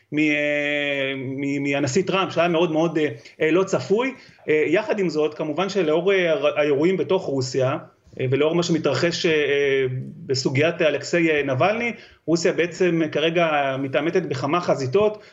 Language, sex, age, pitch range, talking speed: Hebrew, male, 40-59, 150-185 Hz, 105 wpm